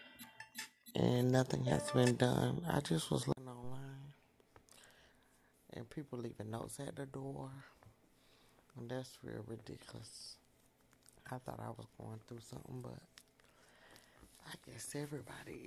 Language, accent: English, American